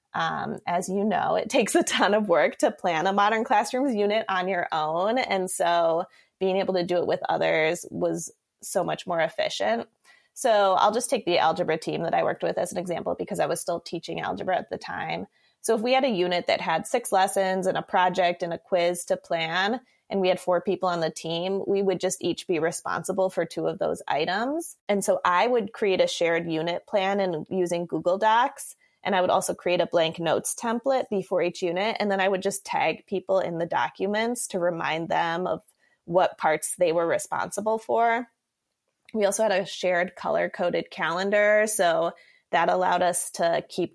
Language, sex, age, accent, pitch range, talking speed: English, female, 20-39, American, 175-210 Hz, 205 wpm